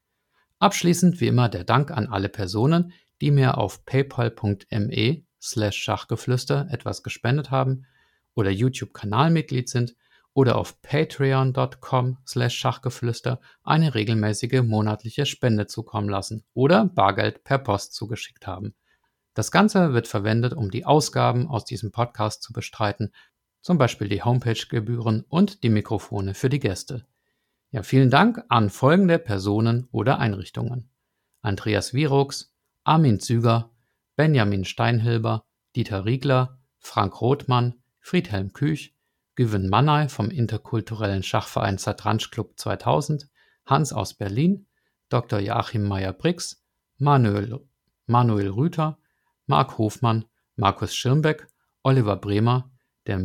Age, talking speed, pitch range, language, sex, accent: 50-69, 115 wpm, 105-135 Hz, German, male, German